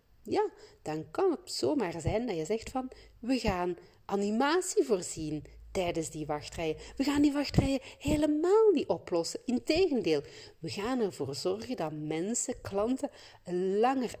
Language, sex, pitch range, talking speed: Dutch, female, 155-250 Hz, 140 wpm